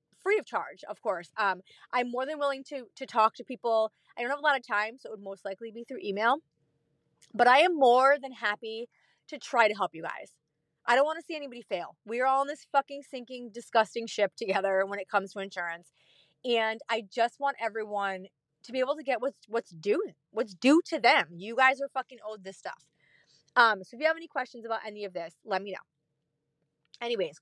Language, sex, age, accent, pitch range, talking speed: English, female, 30-49, American, 190-270 Hz, 225 wpm